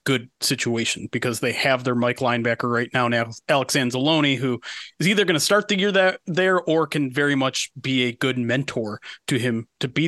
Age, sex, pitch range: 30-49, male, 130-185 Hz